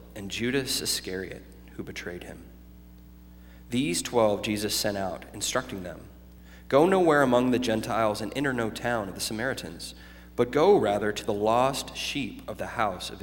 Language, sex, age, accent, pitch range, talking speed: English, male, 30-49, American, 95-125 Hz, 165 wpm